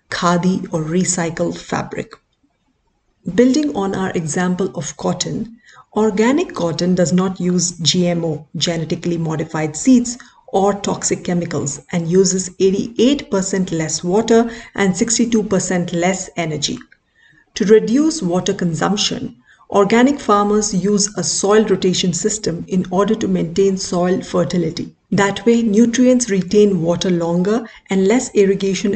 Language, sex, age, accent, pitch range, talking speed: Hindi, female, 50-69, native, 175-210 Hz, 120 wpm